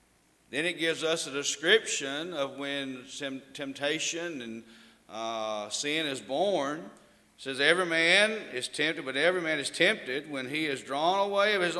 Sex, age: male, 40-59